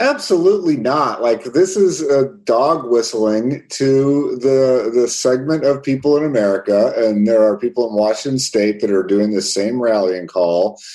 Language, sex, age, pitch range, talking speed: English, male, 40-59, 125-180 Hz, 165 wpm